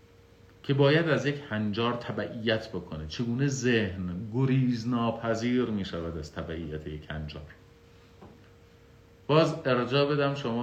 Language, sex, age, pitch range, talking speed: Persian, male, 50-69, 90-110 Hz, 120 wpm